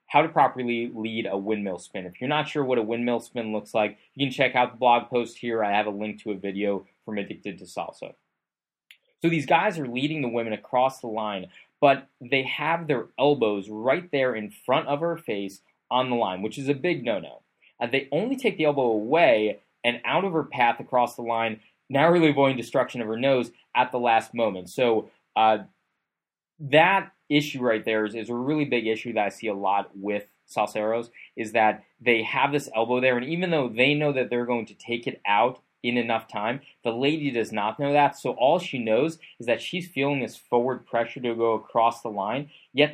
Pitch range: 110-140 Hz